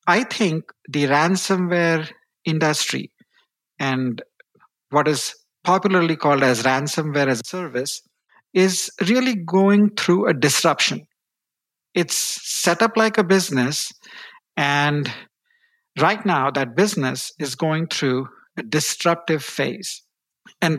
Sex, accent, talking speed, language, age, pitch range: male, Indian, 115 wpm, English, 50-69, 140-185 Hz